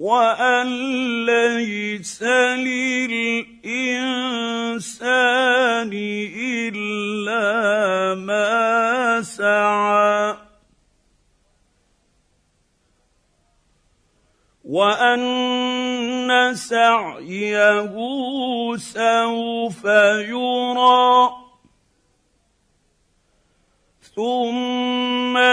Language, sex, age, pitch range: Arabic, male, 50-69, 210-255 Hz